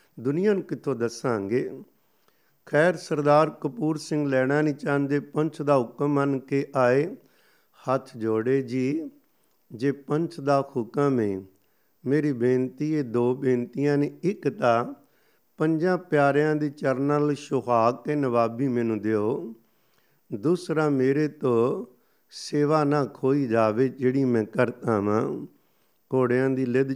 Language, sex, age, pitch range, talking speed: Punjabi, male, 50-69, 130-150 Hz, 125 wpm